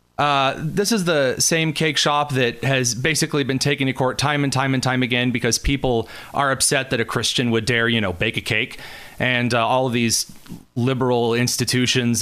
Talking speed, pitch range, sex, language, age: 200 wpm, 120-145 Hz, male, English, 30-49